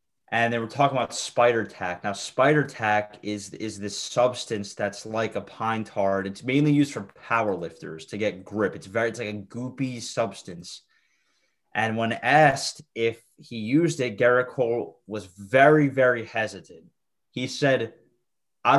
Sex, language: male, English